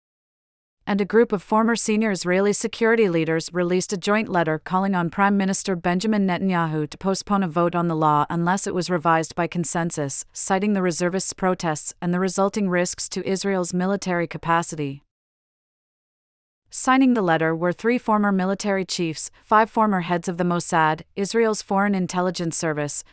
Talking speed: 160 wpm